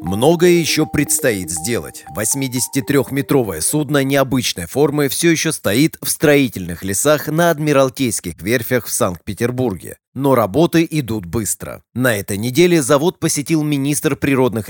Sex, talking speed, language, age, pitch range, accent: male, 125 wpm, Russian, 30-49, 110-145 Hz, native